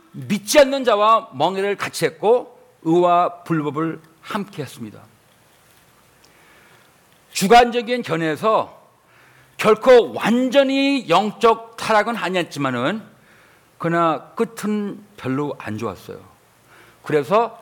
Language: Korean